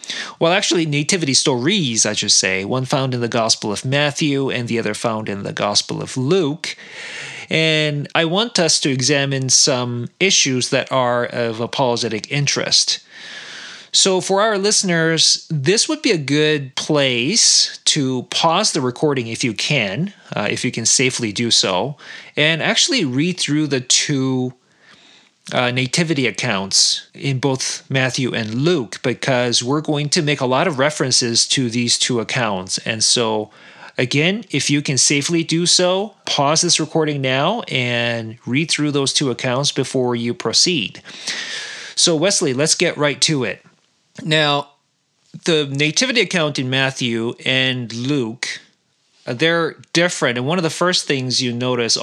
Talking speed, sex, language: 155 wpm, male, English